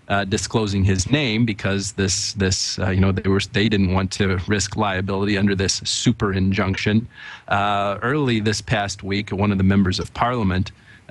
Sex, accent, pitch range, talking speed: male, American, 95-110 Hz, 180 wpm